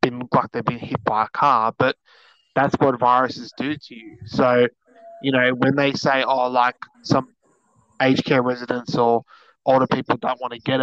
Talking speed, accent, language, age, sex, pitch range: 185 wpm, Australian, English, 20-39, male, 120-135 Hz